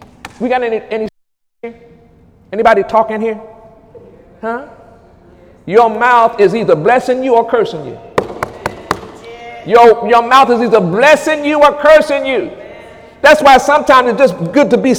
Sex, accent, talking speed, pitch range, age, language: male, American, 145 wpm, 200-255 Hz, 50-69, English